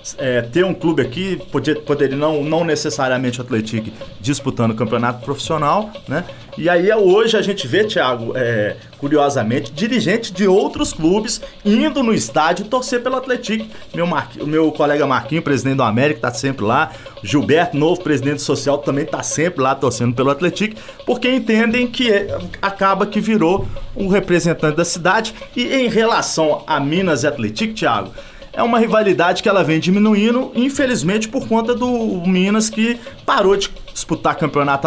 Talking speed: 155 wpm